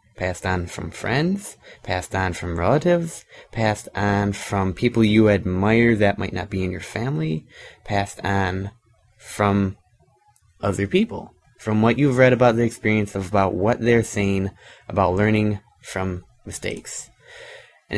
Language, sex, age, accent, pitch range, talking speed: English, male, 20-39, American, 95-115 Hz, 145 wpm